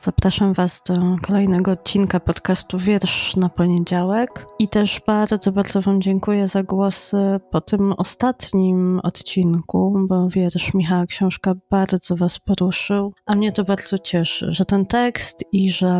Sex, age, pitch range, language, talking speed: female, 30-49, 180-200 Hz, Polish, 145 wpm